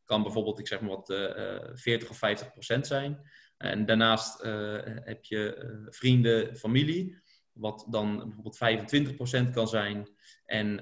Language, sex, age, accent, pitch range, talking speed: Dutch, male, 20-39, Dutch, 105-120 Hz, 155 wpm